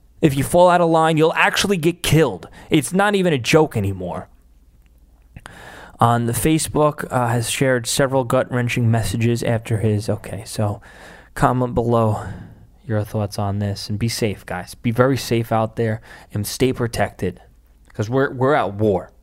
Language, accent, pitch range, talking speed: English, American, 110-160 Hz, 160 wpm